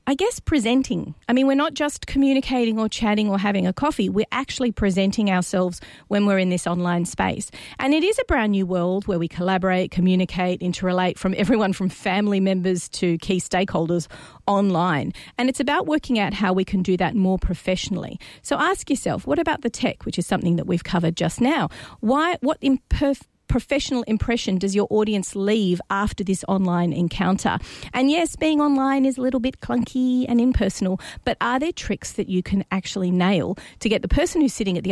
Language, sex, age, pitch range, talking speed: English, female, 40-59, 185-250 Hz, 195 wpm